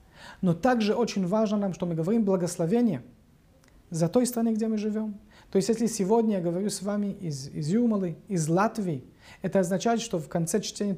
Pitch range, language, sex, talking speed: 165-200 Hz, Russian, male, 185 wpm